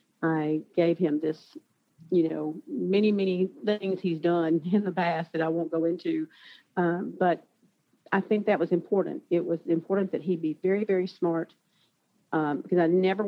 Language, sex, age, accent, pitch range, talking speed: English, female, 50-69, American, 165-195 Hz, 175 wpm